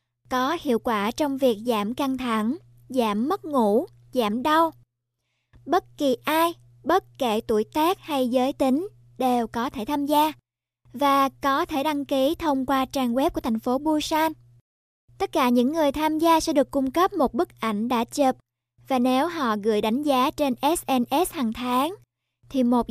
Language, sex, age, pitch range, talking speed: Vietnamese, male, 20-39, 240-310 Hz, 180 wpm